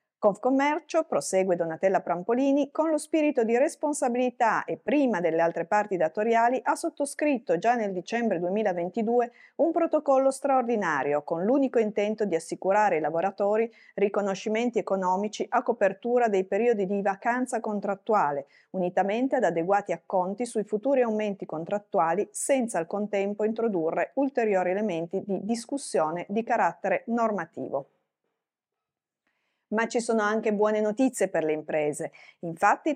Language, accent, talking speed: Italian, native, 125 wpm